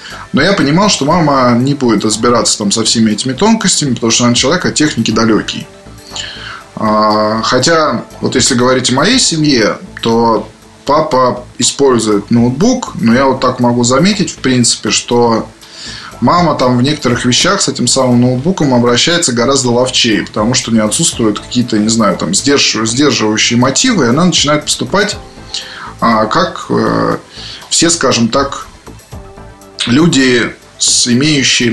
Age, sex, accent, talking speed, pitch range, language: 20-39, male, native, 135 wpm, 115-140 Hz, Russian